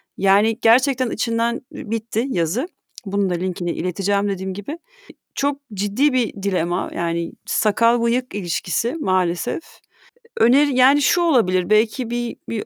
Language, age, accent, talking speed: Turkish, 40-59, native, 125 wpm